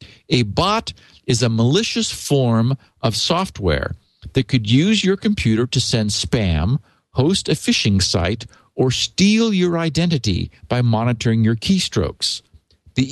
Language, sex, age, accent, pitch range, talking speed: English, male, 50-69, American, 105-140 Hz, 135 wpm